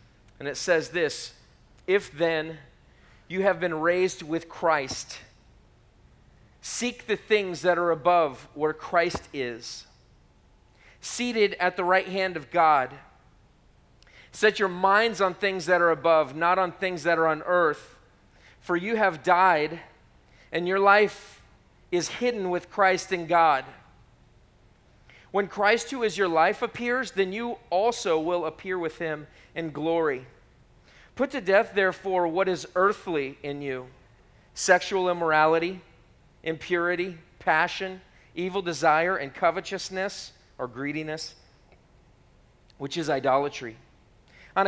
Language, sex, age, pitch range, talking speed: English, male, 40-59, 155-195 Hz, 130 wpm